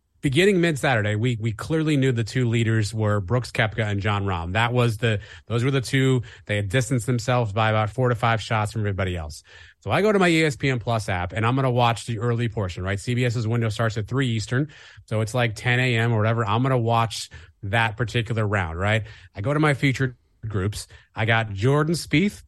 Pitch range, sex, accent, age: 105-130 Hz, male, American, 30-49